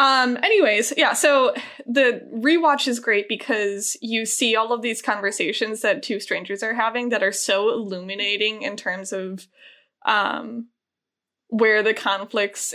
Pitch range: 200-260 Hz